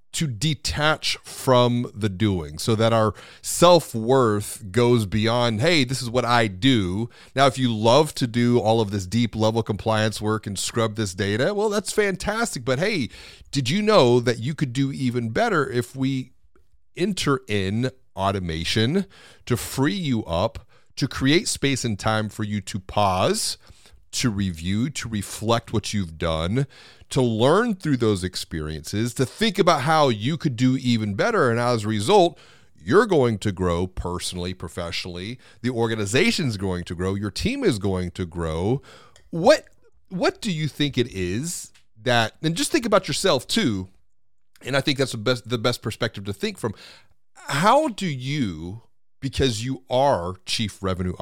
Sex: male